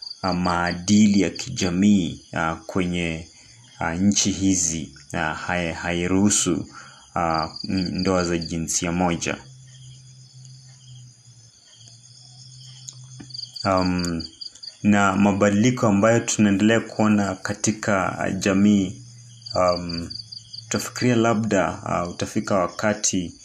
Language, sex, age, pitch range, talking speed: Swahili, male, 30-49, 85-105 Hz, 75 wpm